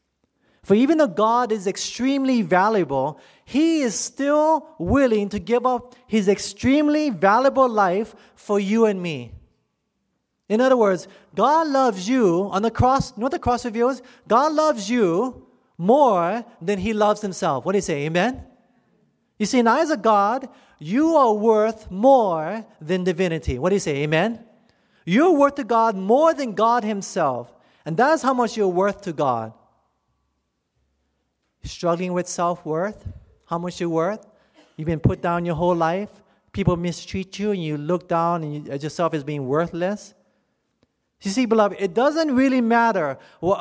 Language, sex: English, male